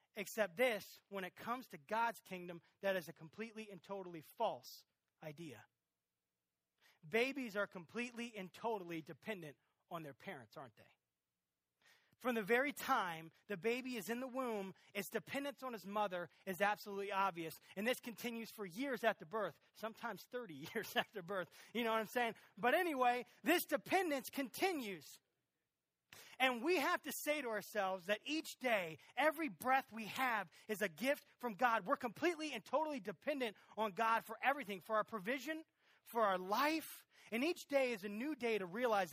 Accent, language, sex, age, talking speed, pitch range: American, English, male, 30-49, 170 wpm, 165-245 Hz